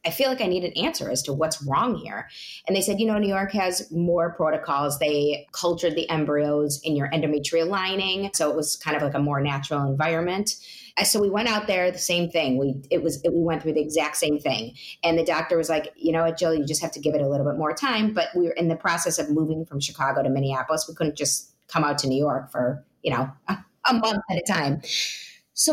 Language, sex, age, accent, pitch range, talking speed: English, female, 30-49, American, 155-195 Hz, 245 wpm